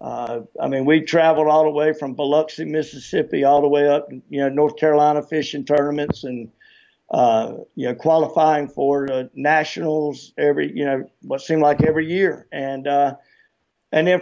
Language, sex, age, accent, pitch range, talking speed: English, male, 50-69, American, 140-170 Hz, 175 wpm